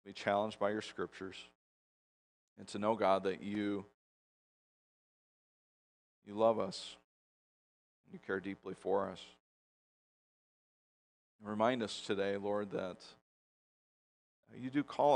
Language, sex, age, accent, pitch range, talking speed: English, male, 40-59, American, 95-105 Hz, 115 wpm